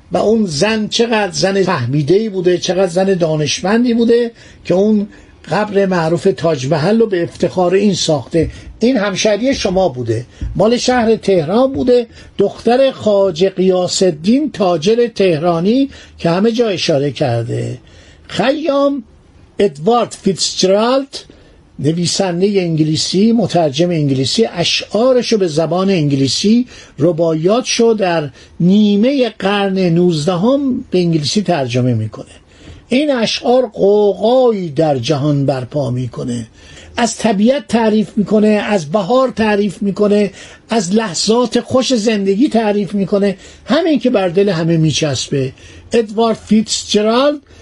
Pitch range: 165-225 Hz